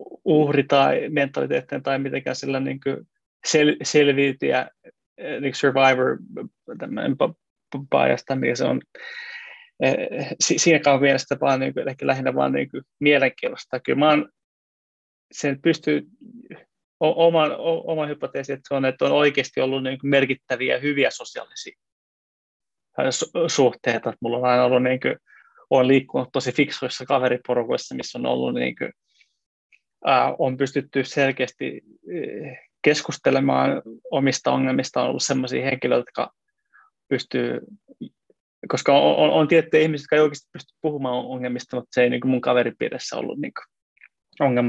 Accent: native